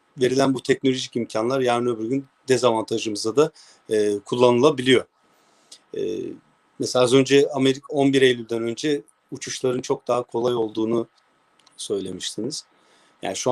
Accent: native